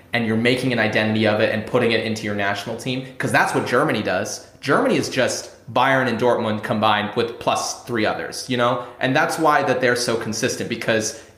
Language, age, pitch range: English, 30-49, 110-140 Hz